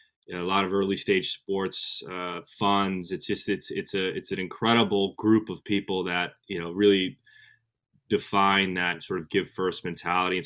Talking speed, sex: 190 wpm, male